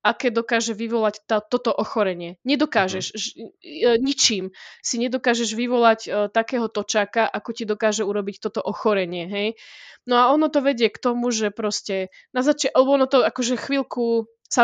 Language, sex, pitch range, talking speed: Slovak, female, 215-255 Hz, 150 wpm